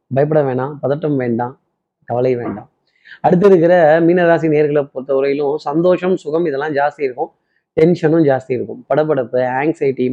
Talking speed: 120 wpm